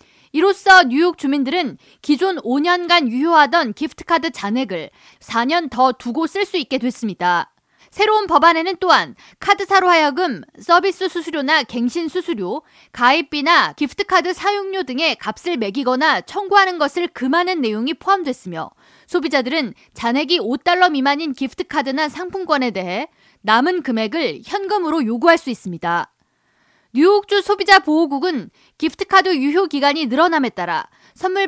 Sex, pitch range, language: female, 260-360 Hz, Korean